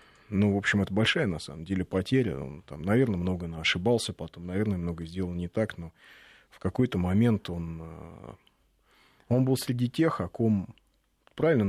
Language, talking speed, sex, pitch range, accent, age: Russian, 165 wpm, male, 90-110 Hz, native, 30-49